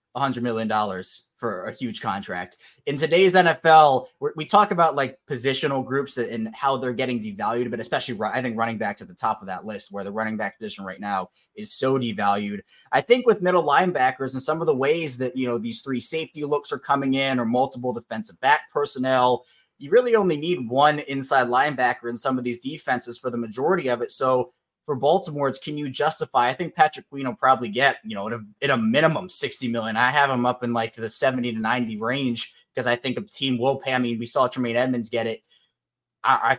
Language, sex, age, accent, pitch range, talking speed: English, male, 20-39, American, 120-150 Hz, 220 wpm